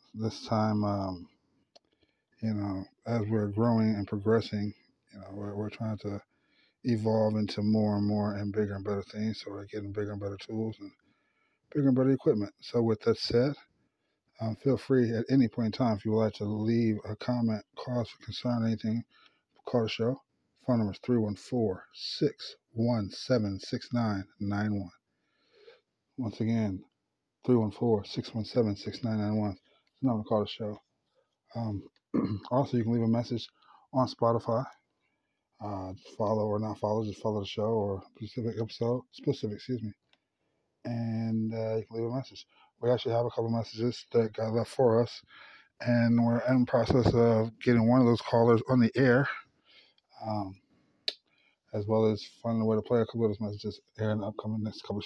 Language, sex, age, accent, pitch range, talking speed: English, male, 20-39, American, 105-120 Hz, 175 wpm